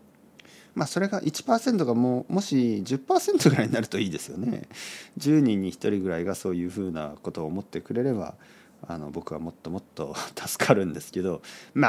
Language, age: Japanese, 40-59